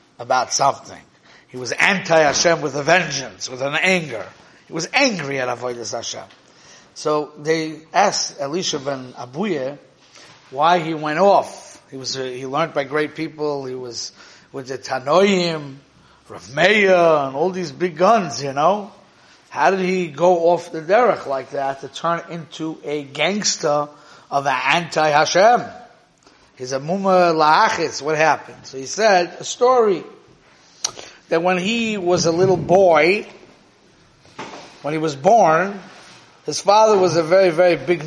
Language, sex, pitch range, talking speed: English, male, 145-185 Hz, 145 wpm